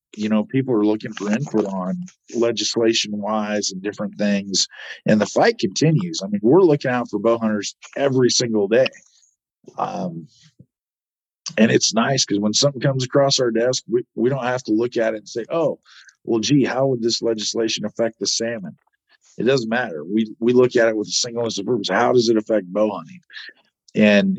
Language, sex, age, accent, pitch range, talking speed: English, male, 50-69, American, 105-120 Hz, 195 wpm